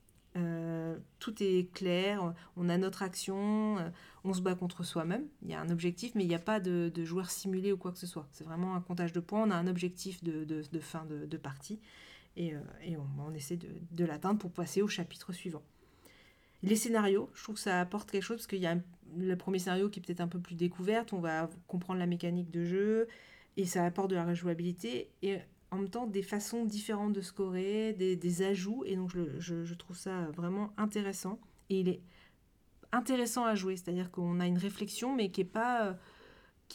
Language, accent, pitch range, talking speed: French, French, 175-210 Hz, 215 wpm